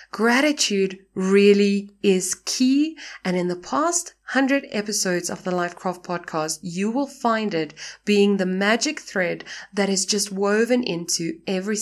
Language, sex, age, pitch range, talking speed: English, female, 20-39, 185-265 Hz, 140 wpm